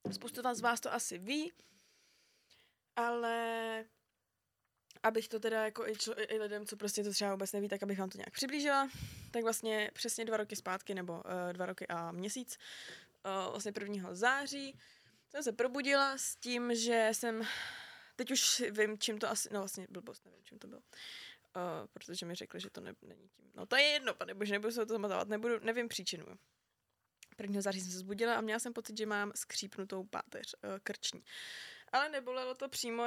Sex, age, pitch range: female, 20-39, 200-235 Hz